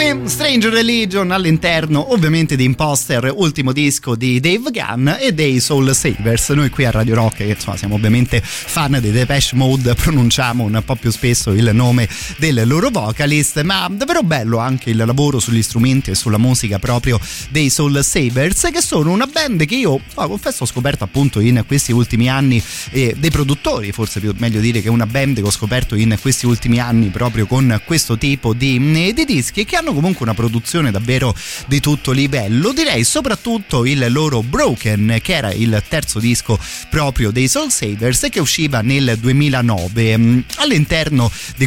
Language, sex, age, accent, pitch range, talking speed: Italian, male, 30-49, native, 115-145 Hz, 175 wpm